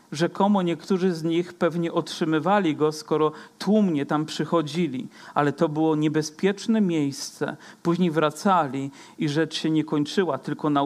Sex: male